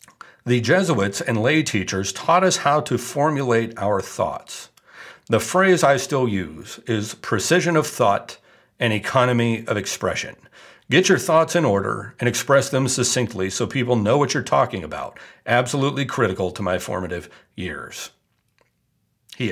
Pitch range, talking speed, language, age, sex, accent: 110-140 Hz, 150 wpm, English, 50-69, male, American